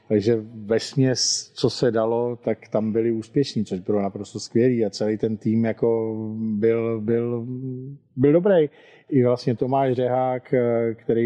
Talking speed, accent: 150 wpm, native